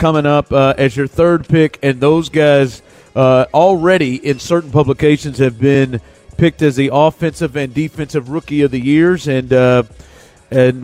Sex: male